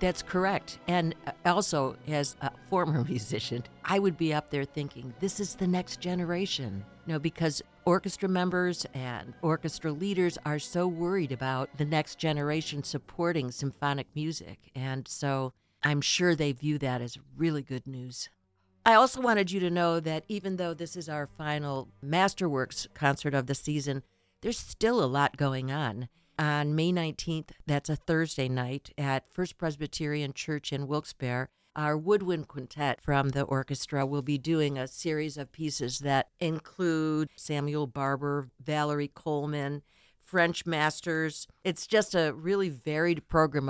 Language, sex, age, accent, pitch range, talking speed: English, female, 60-79, American, 135-165 Hz, 155 wpm